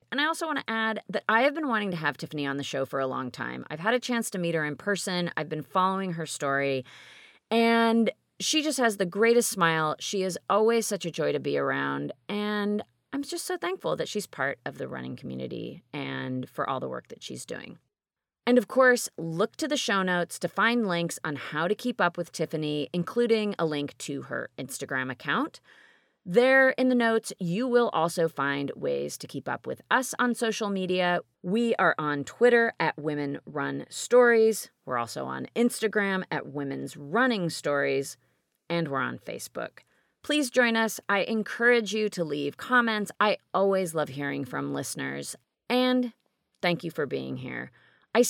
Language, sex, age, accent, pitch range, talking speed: English, female, 30-49, American, 150-230 Hz, 195 wpm